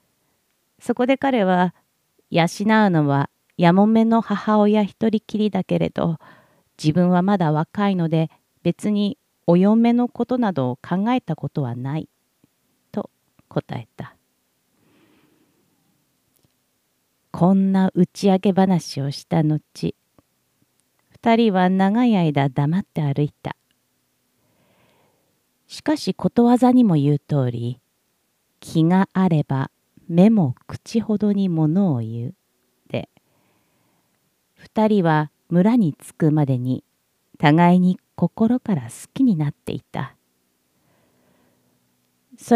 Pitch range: 140-210 Hz